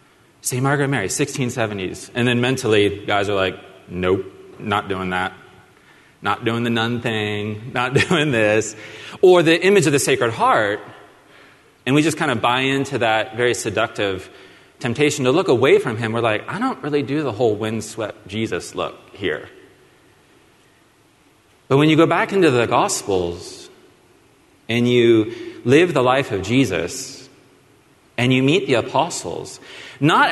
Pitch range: 110-145 Hz